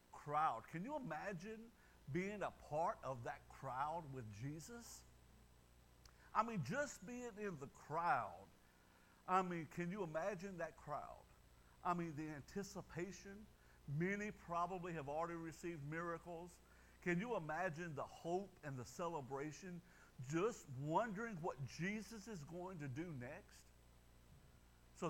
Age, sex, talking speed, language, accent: 50-69, male, 130 wpm, English, American